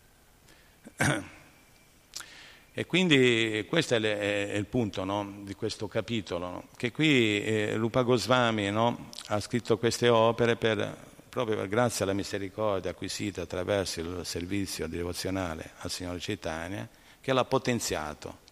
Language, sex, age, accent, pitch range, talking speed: Italian, male, 50-69, native, 95-115 Hz, 120 wpm